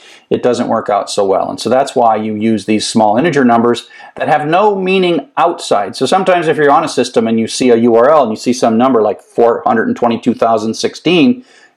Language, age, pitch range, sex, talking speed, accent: English, 50-69, 115-150 Hz, male, 205 wpm, American